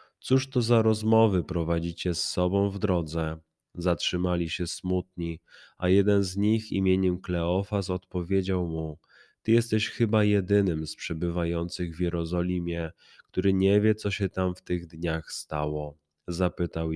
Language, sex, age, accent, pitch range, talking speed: Polish, male, 20-39, native, 85-100 Hz, 140 wpm